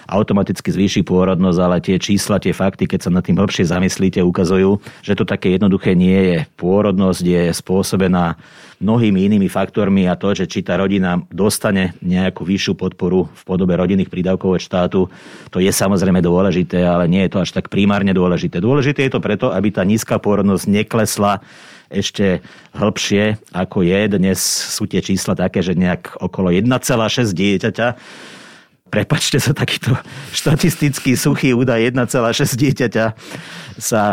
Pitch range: 90-110 Hz